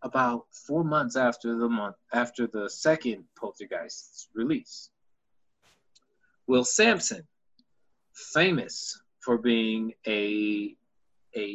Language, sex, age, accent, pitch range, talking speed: English, male, 30-49, American, 95-125 Hz, 95 wpm